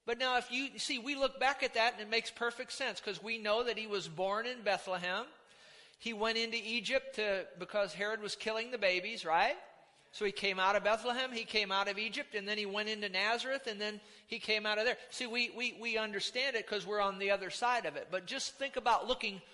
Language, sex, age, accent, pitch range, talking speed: English, male, 50-69, American, 200-235 Hz, 245 wpm